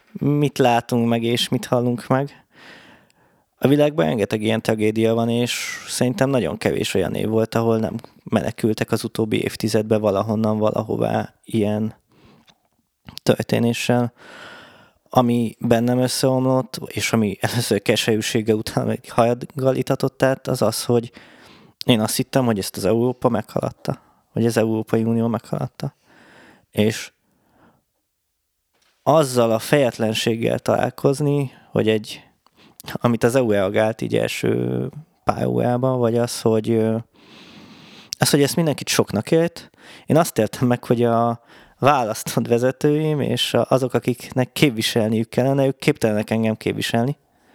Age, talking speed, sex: 20-39, 120 wpm, male